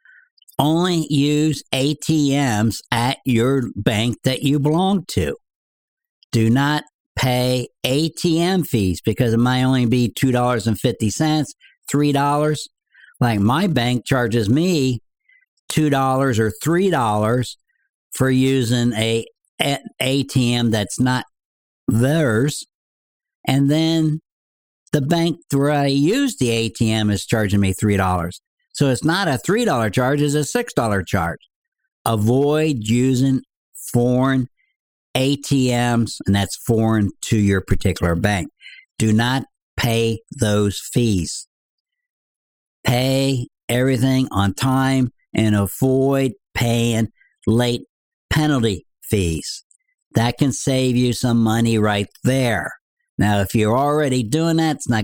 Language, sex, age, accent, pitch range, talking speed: English, male, 60-79, American, 115-150 Hz, 110 wpm